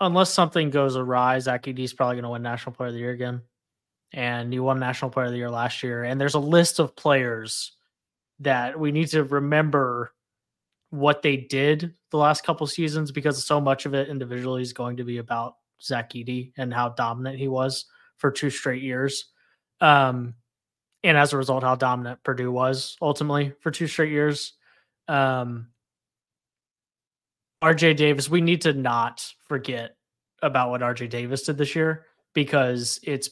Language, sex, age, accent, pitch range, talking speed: English, male, 20-39, American, 120-145 Hz, 175 wpm